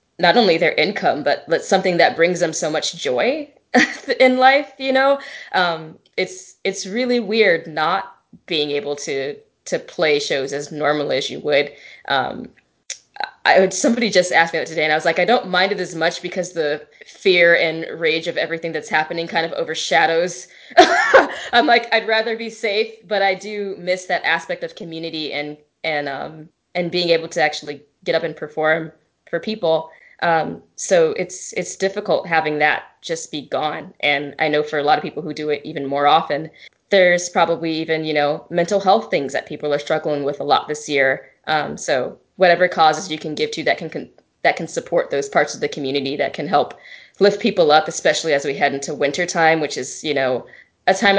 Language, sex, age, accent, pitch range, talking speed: English, female, 10-29, American, 150-190 Hz, 200 wpm